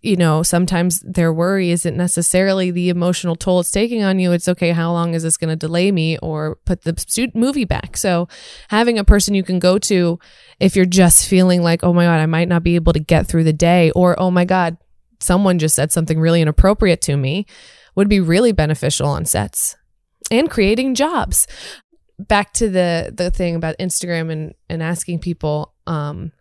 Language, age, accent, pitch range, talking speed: English, 20-39, American, 165-185 Hz, 200 wpm